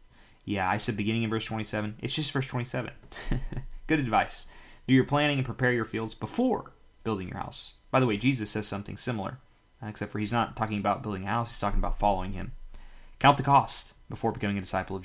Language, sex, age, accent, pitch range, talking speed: English, male, 20-39, American, 100-115 Hz, 210 wpm